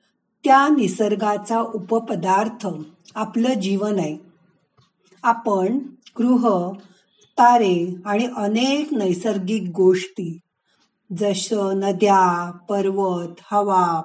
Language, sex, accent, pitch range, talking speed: Marathi, female, native, 185-240 Hz, 75 wpm